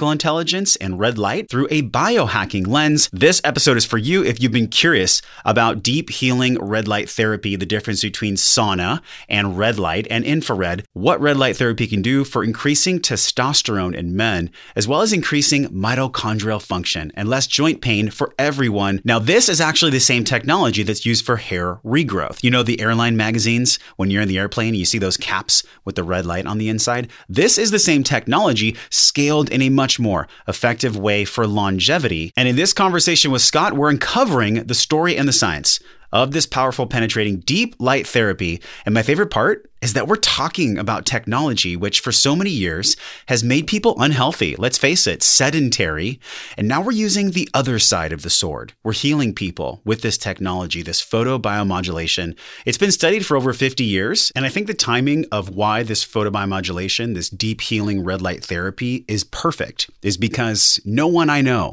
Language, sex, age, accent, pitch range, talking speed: English, male, 30-49, American, 100-140 Hz, 190 wpm